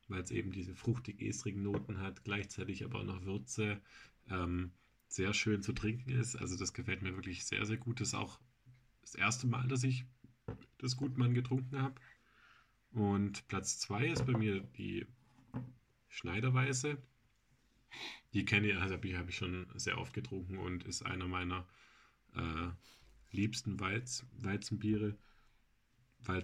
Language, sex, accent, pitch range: German, male, German, 95-120 Hz